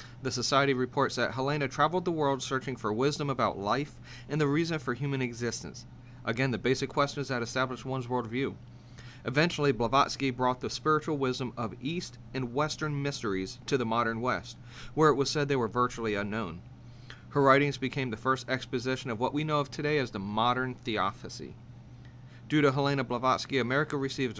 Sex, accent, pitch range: male, American, 120-140 Hz